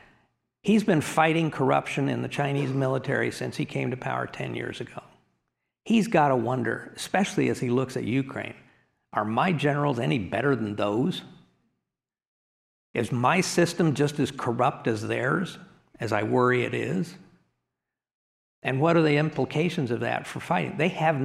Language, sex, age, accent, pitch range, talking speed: English, male, 50-69, American, 120-155 Hz, 160 wpm